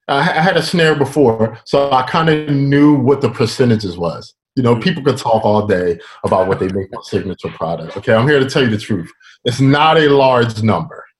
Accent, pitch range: American, 115-150 Hz